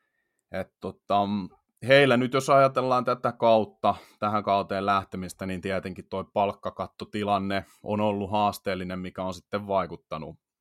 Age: 30-49